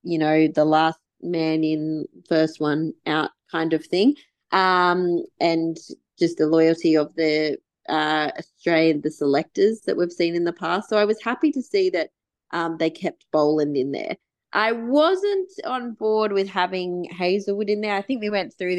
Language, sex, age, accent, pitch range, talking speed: English, female, 20-39, Australian, 165-215 Hz, 180 wpm